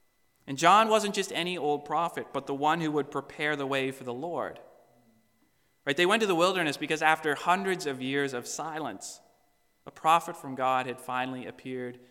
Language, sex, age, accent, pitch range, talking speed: English, male, 30-49, American, 125-165 Hz, 190 wpm